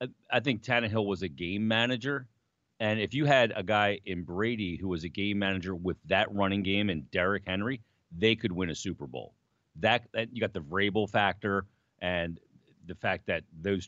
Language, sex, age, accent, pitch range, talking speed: English, male, 40-59, American, 95-120 Hz, 195 wpm